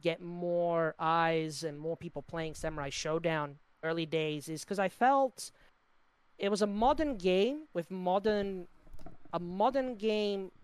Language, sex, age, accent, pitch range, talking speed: English, male, 30-49, American, 155-190 Hz, 140 wpm